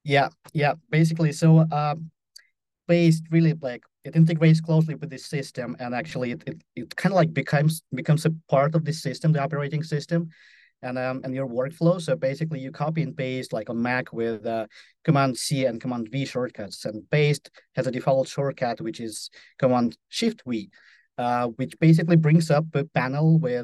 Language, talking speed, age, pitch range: English, 190 wpm, 30-49, 120-155 Hz